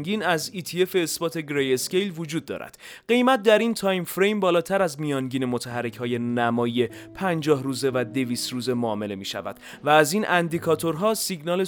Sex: male